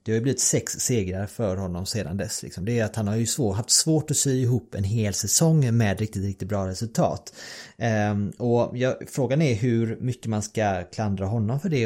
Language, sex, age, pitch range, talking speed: Swedish, male, 30-49, 100-125 Hz, 205 wpm